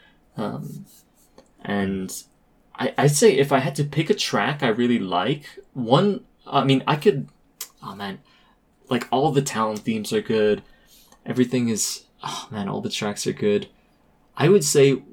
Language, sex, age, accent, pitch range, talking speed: English, male, 20-39, American, 110-140 Hz, 165 wpm